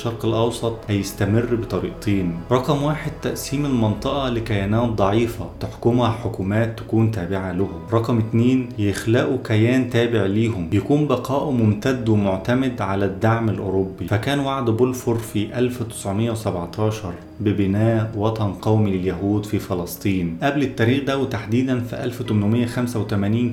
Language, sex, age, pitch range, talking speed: Arabic, male, 30-49, 100-120 Hz, 115 wpm